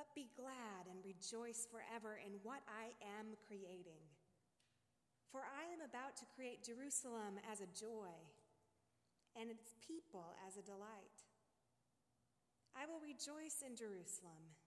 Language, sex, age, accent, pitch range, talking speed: English, female, 20-39, American, 200-255 Hz, 130 wpm